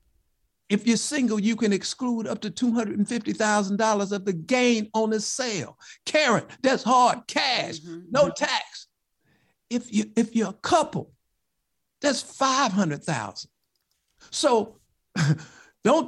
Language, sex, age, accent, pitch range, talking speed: English, male, 60-79, American, 155-220 Hz, 110 wpm